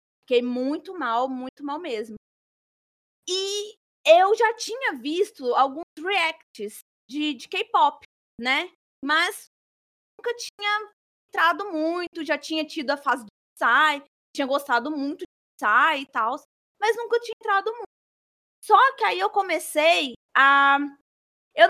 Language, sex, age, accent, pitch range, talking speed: Portuguese, female, 20-39, Brazilian, 280-390 Hz, 135 wpm